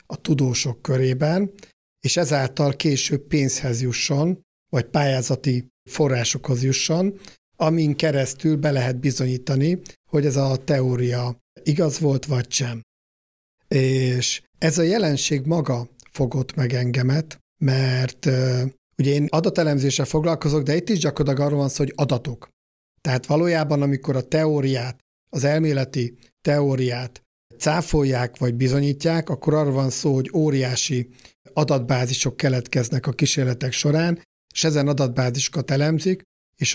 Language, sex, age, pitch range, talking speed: Hungarian, male, 60-79, 130-150 Hz, 120 wpm